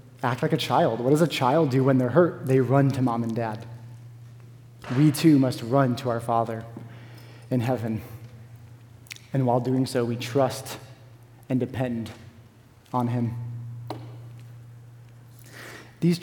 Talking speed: 140 wpm